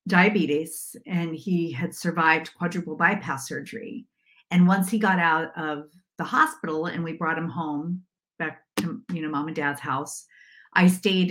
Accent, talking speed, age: American, 165 wpm, 50-69